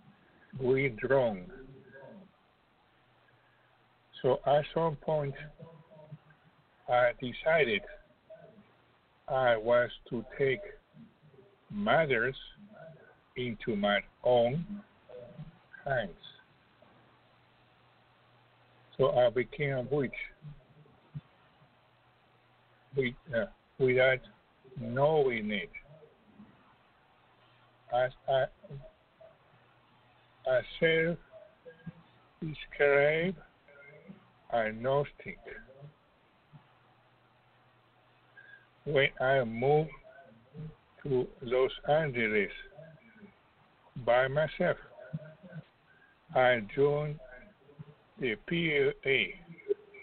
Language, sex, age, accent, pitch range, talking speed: English, male, 60-79, American, 130-175 Hz, 55 wpm